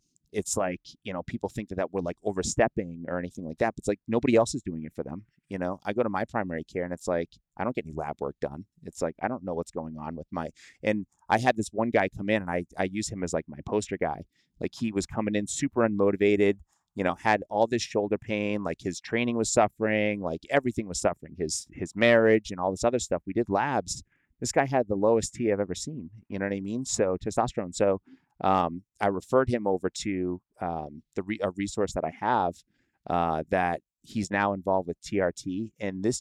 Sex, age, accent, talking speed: male, 30-49, American, 240 wpm